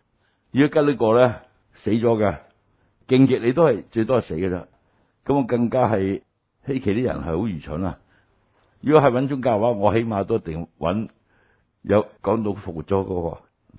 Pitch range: 95-120 Hz